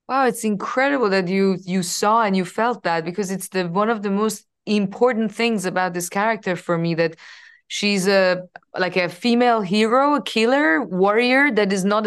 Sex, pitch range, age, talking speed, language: female, 185-225 Hz, 20-39, 190 wpm, English